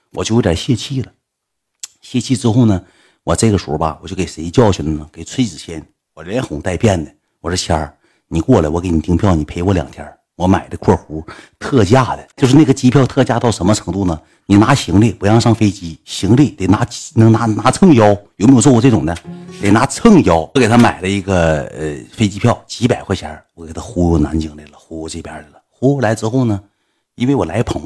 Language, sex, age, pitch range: Chinese, male, 50-69, 85-110 Hz